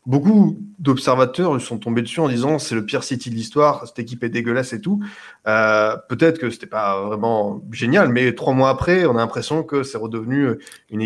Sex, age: male, 20-39